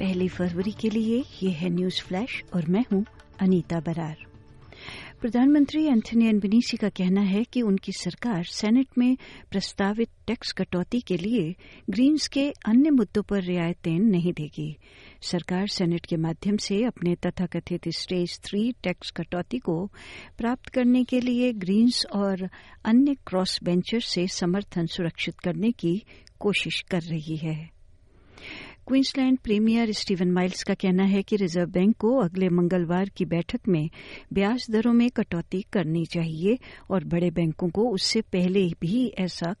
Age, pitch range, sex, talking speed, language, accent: 60-79, 175-225 Hz, female, 145 wpm, Hindi, native